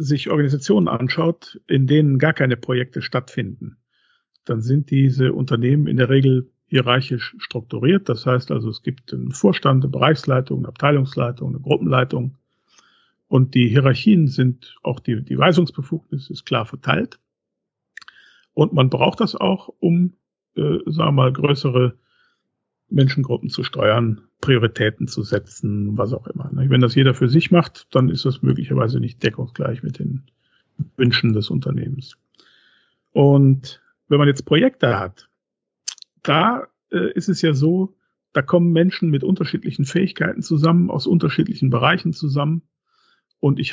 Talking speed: 140 wpm